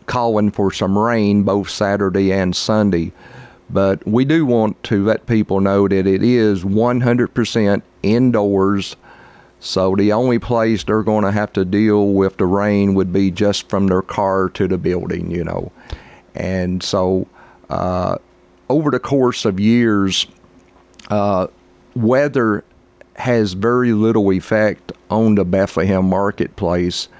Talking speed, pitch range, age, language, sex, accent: 140 wpm, 95-110 Hz, 50-69, English, male, American